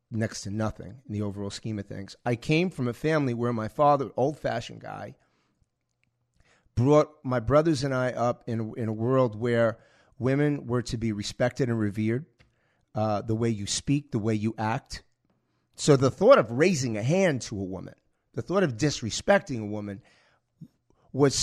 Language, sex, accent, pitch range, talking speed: English, male, American, 110-145 Hz, 175 wpm